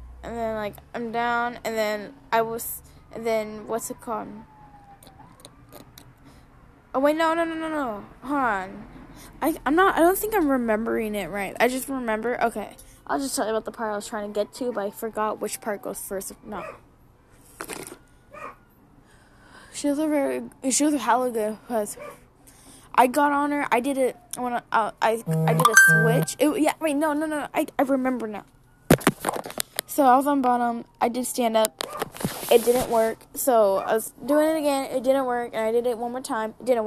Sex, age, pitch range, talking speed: female, 10-29, 220-270 Hz, 200 wpm